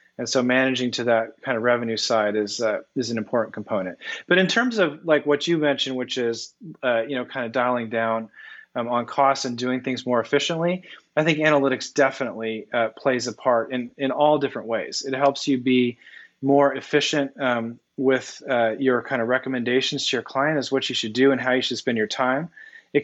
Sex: male